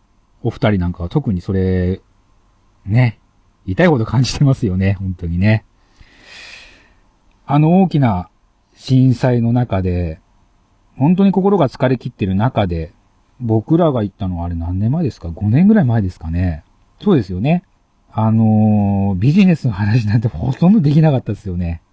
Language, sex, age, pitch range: Japanese, male, 40-59, 95-130 Hz